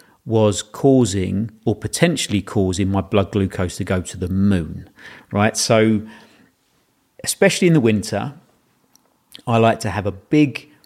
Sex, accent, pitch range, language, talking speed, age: male, British, 105-125 Hz, English, 140 wpm, 40-59